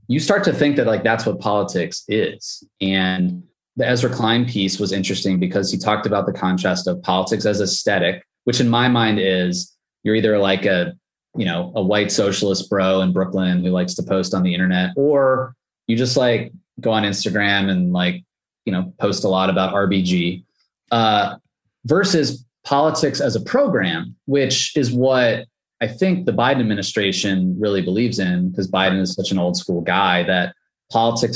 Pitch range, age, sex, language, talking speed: 95-120 Hz, 20-39, male, English, 180 wpm